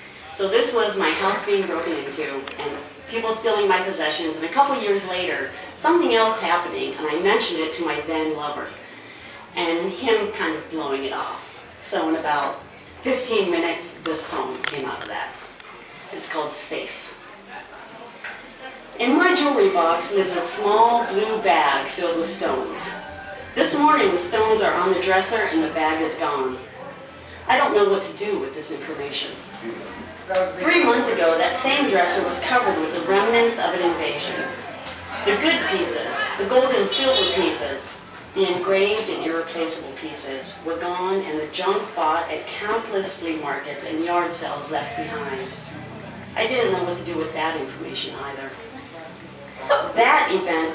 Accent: American